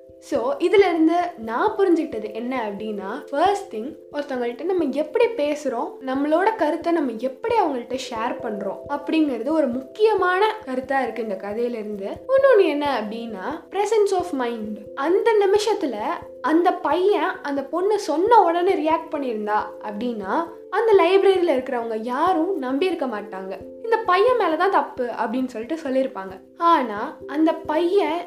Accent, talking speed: native, 125 wpm